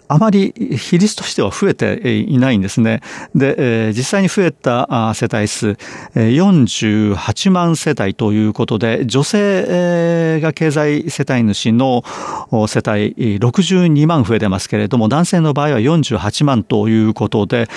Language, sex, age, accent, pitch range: Japanese, male, 40-59, native, 110-150 Hz